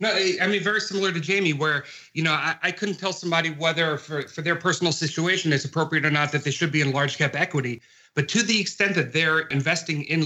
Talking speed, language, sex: 240 wpm, English, male